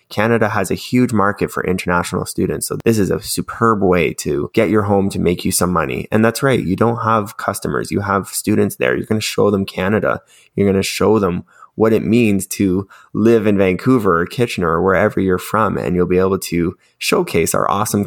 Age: 20-39